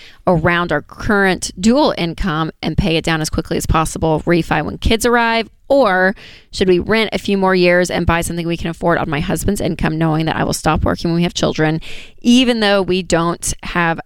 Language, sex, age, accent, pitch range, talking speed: English, female, 20-39, American, 165-200 Hz, 215 wpm